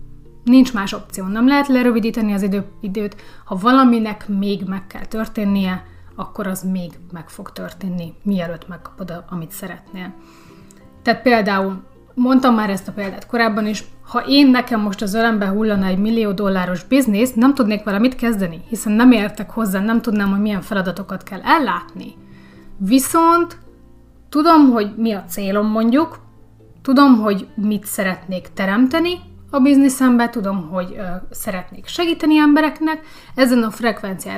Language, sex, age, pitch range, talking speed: Hungarian, female, 30-49, 190-255 Hz, 145 wpm